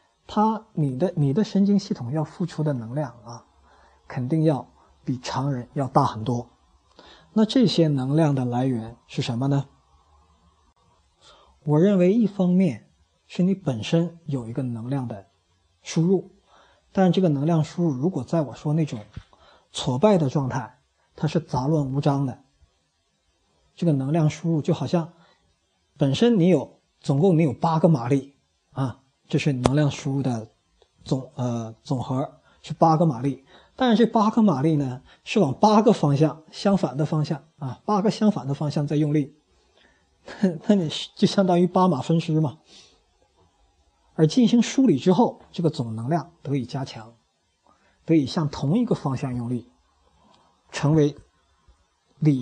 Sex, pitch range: male, 125-170 Hz